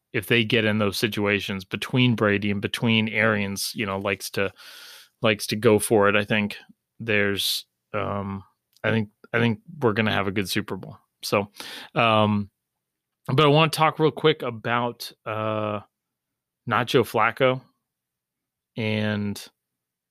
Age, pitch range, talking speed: 30-49, 100-120 Hz, 145 wpm